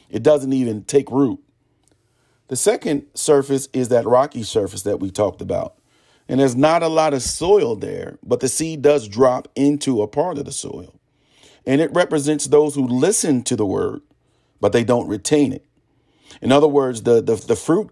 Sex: male